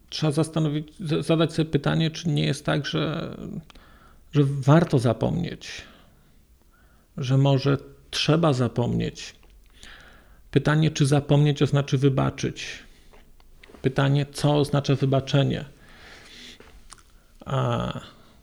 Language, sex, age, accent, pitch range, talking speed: Polish, male, 50-69, native, 125-150 Hz, 90 wpm